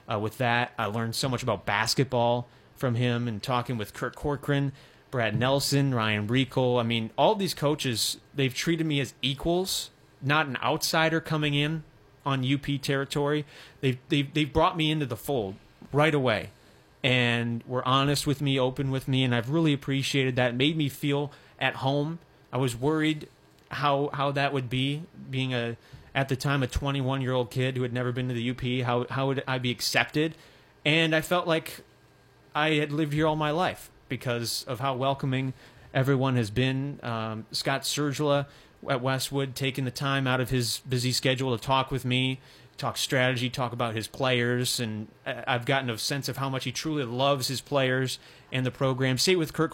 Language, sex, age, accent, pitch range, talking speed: English, male, 30-49, American, 125-145 Hz, 185 wpm